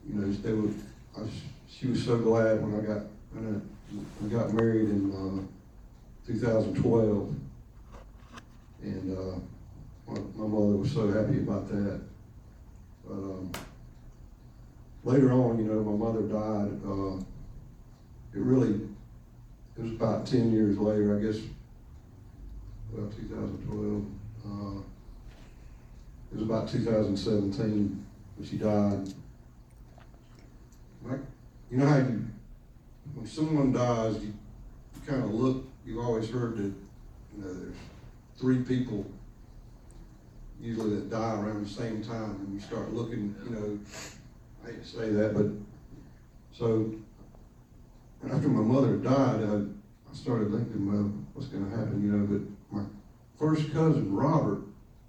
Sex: male